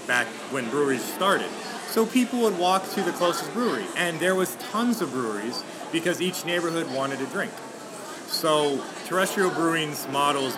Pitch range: 150-195 Hz